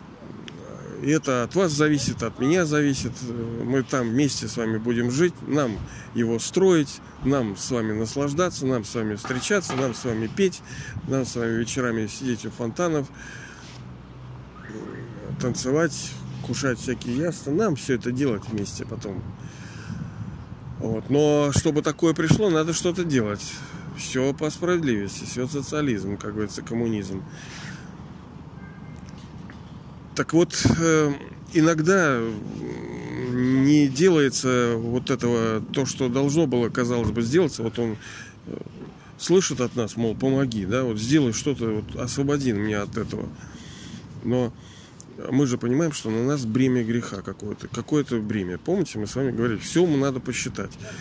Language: Russian